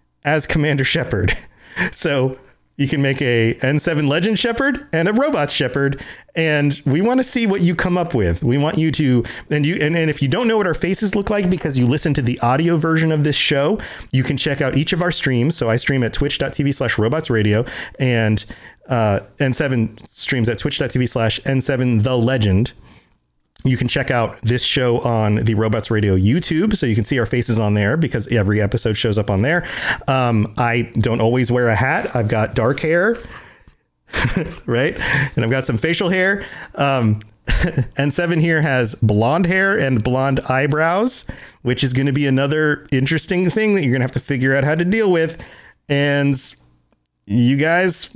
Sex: male